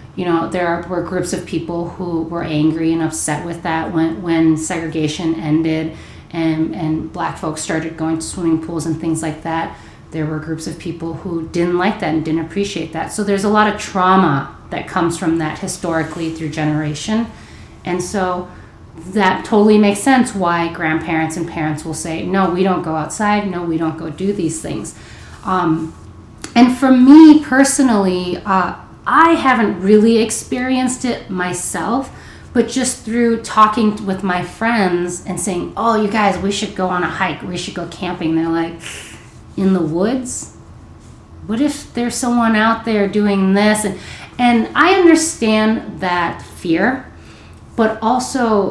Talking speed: 165 wpm